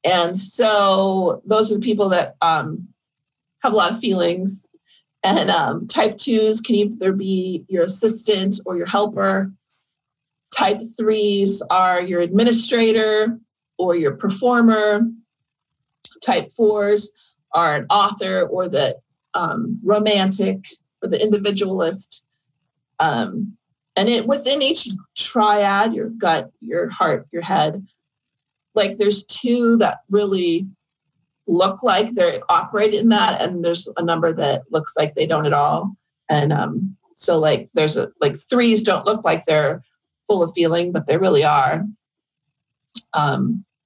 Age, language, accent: 40-59, English, American